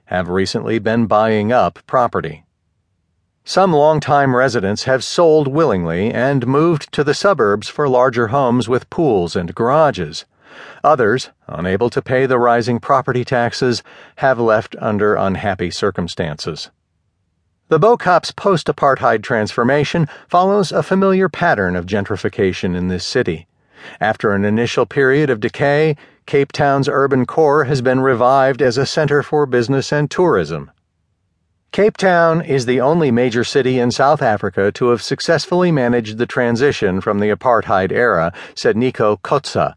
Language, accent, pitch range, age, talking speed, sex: English, American, 100-145 Hz, 40-59, 140 wpm, male